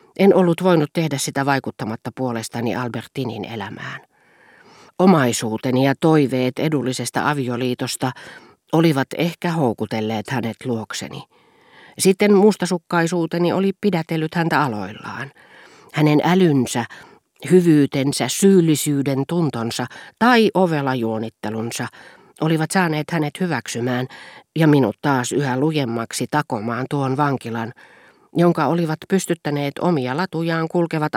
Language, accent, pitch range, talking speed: Finnish, native, 125-165 Hz, 95 wpm